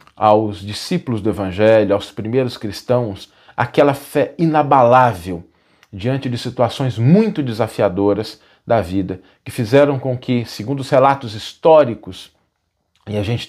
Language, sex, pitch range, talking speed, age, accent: Portuguese, male, 105-135 Hz, 125 wpm, 40-59, Brazilian